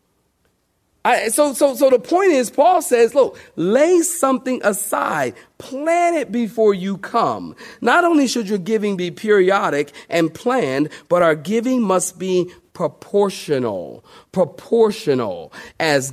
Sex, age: male, 40-59